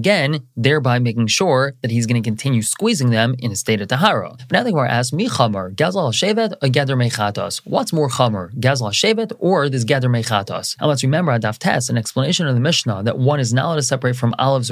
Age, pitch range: 20-39, 120-150 Hz